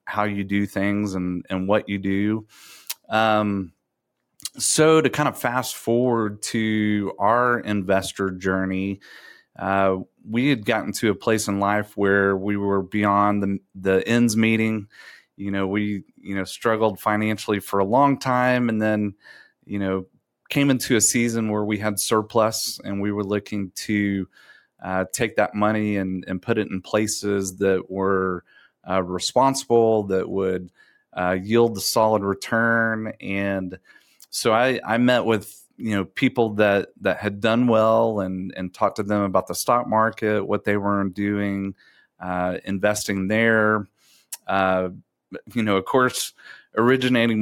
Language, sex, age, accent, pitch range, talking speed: English, male, 30-49, American, 95-110 Hz, 155 wpm